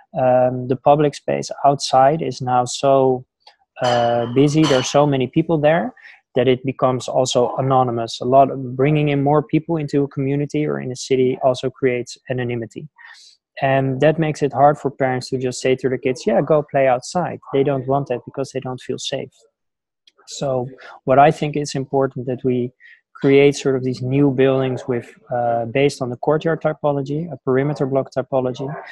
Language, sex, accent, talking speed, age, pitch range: English, male, Dutch, 185 wpm, 20-39, 125-145 Hz